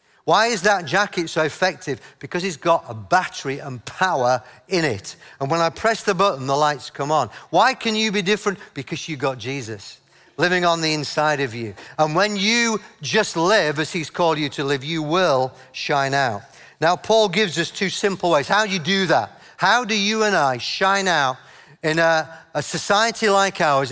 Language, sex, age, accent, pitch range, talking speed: English, male, 50-69, British, 140-195 Hz, 200 wpm